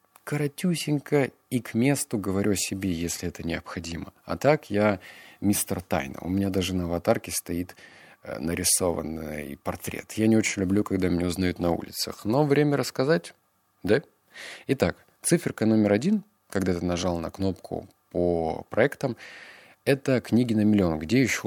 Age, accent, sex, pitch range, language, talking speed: 30-49, native, male, 90-120 Hz, Russian, 145 wpm